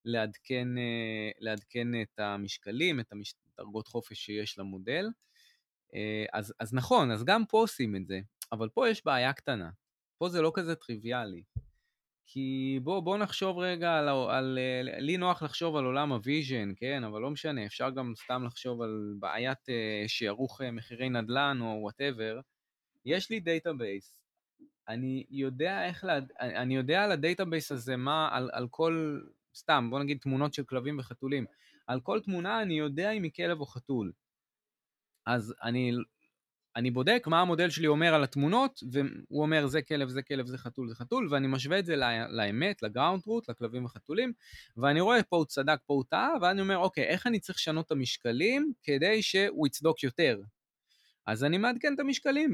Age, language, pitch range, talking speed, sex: 20-39, Hebrew, 120-170 Hz, 160 wpm, male